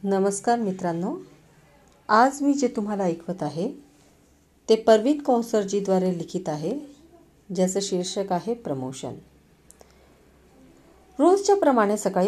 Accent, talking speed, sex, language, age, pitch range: native, 105 wpm, female, Hindi, 50-69, 175-250 Hz